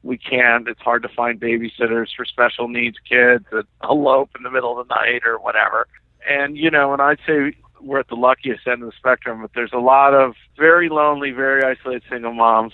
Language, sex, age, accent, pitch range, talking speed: English, male, 50-69, American, 125-145 Hz, 215 wpm